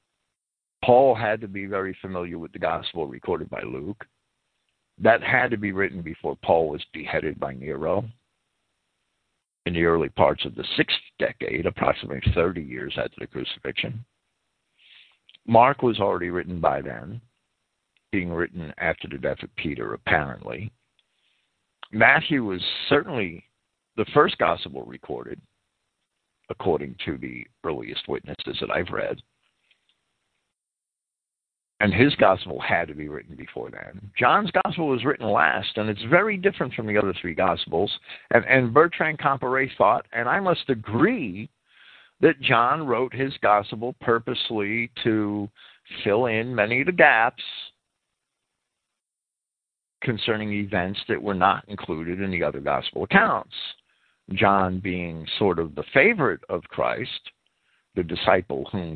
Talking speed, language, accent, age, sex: 135 wpm, English, American, 60-79, male